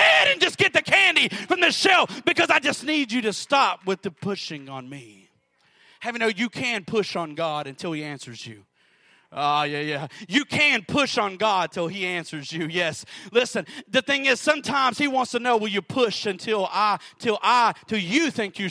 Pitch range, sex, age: 170-260 Hz, male, 30-49